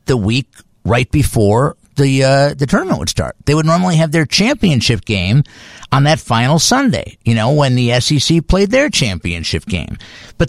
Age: 50-69